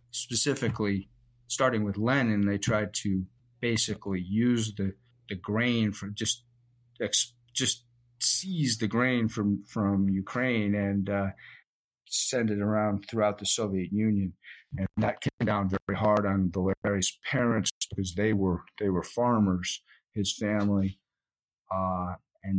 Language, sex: English, male